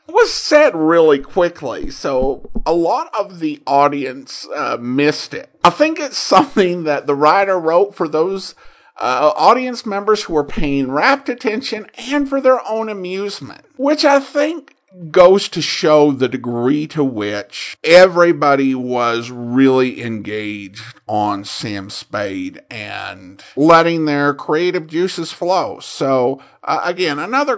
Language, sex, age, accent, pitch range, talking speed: English, male, 50-69, American, 145-225 Hz, 135 wpm